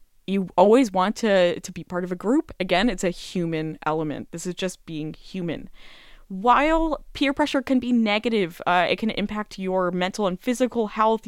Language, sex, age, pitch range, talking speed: Dutch, female, 20-39, 170-220 Hz, 185 wpm